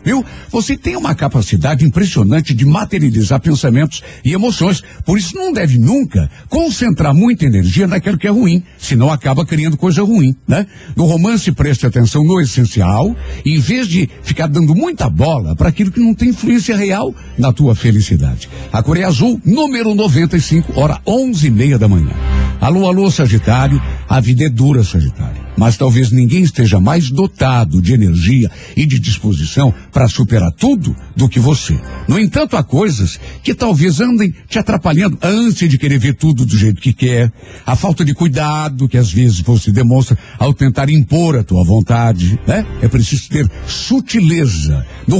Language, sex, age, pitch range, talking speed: Portuguese, male, 60-79, 115-175 Hz, 170 wpm